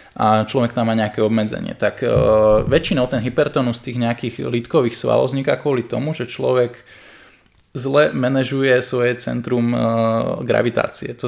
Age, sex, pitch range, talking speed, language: 20-39, male, 120-145 Hz, 145 wpm, Slovak